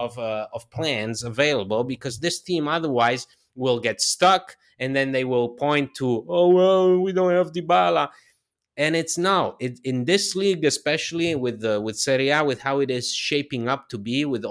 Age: 30-49